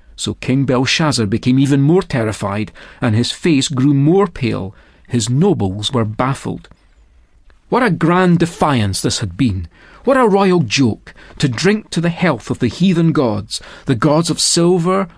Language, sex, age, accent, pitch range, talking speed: English, male, 40-59, British, 110-170 Hz, 160 wpm